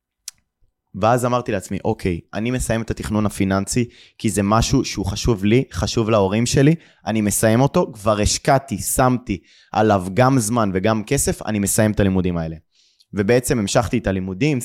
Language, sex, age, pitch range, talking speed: Hebrew, male, 20-39, 95-115 Hz, 155 wpm